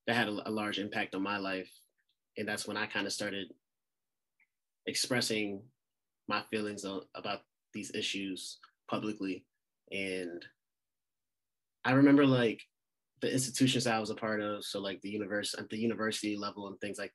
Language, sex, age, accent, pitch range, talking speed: English, male, 20-39, American, 100-120 Hz, 155 wpm